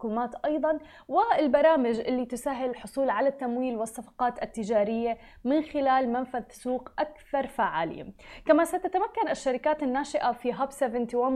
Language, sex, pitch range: Arabic, female, 230-270 Hz